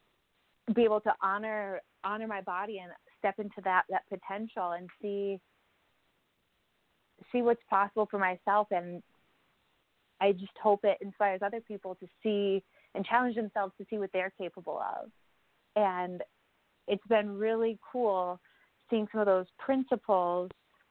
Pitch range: 185-210 Hz